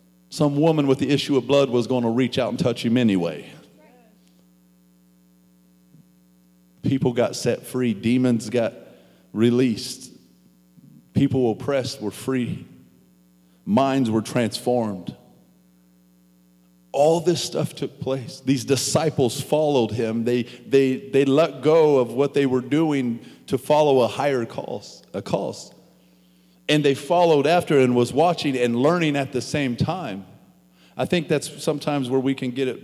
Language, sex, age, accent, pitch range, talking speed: English, male, 40-59, American, 110-150 Hz, 145 wpm